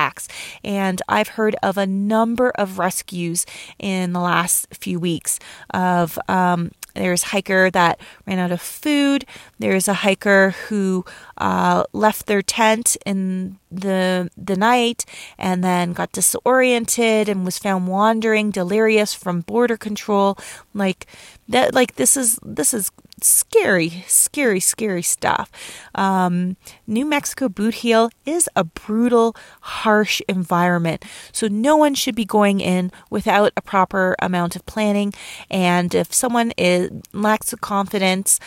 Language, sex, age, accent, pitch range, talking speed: English, female, 30-49, American, 180-220 Hz, 135 wpm